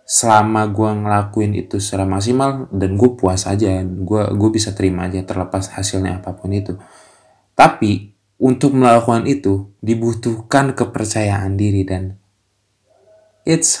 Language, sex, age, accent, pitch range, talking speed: Indonesian, male, 20-39, native, 95-125 Hz, 115 wpm